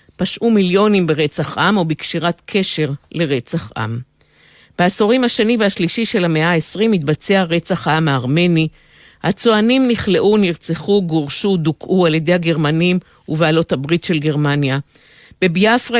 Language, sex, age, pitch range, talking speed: Hebrew, female, 50-69, 150-190 Hz, 120 wpm